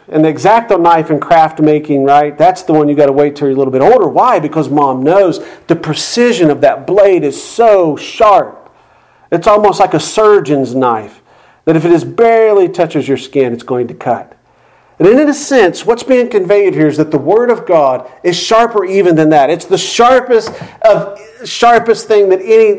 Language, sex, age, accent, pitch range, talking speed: English, male, 40-59, American, 135-180 Hz, 205 wpm